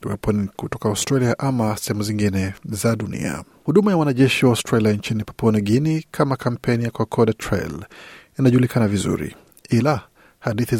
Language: Swahili